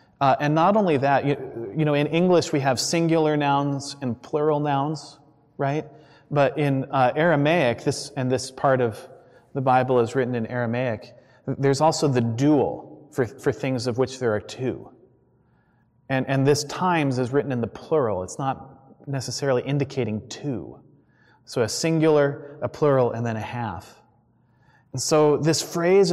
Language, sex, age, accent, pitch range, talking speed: English, male, 30-49, American, 125-155 Hz, 165 wpm